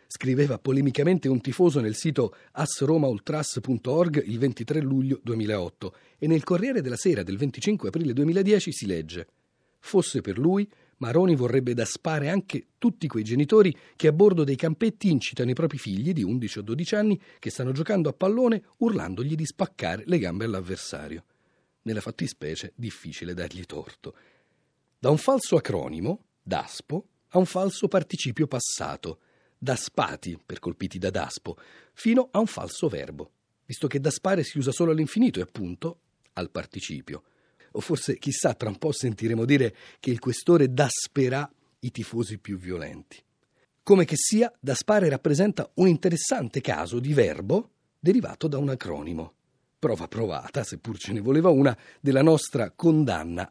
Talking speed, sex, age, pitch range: 150 wpm, male, 40-59, 115-170 Hz